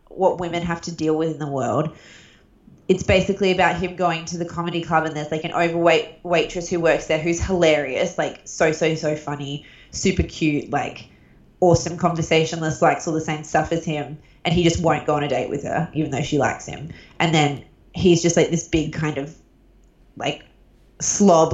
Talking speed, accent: 200 wpm, Australian